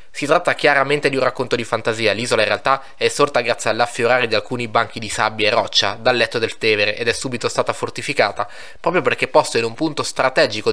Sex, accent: male, native